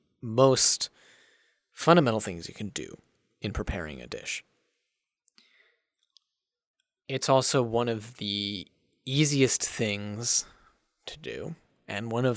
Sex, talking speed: male, 105 wpm